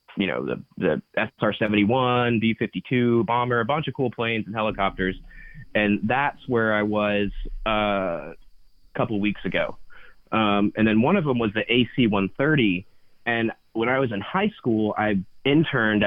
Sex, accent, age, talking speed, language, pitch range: male, American, 20-39, 160 wpm, English, 100-115 Hz